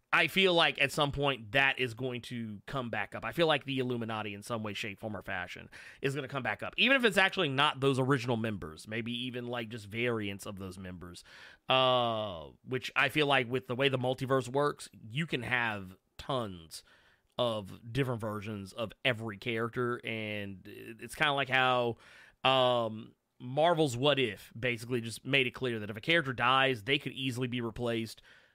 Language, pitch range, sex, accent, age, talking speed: English, 110-135 Hz, male, American, 30-49, 195 wpm